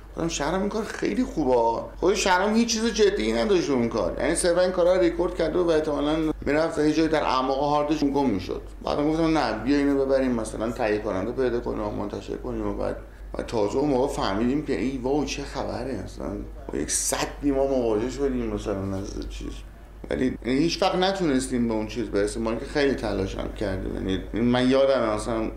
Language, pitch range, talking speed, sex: Persian, 105-150 Hz, 190 wpm, male